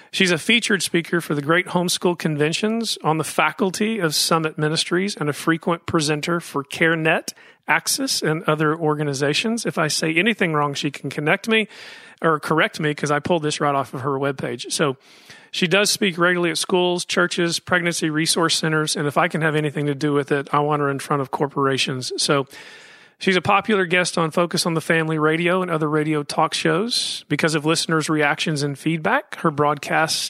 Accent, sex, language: American, male, English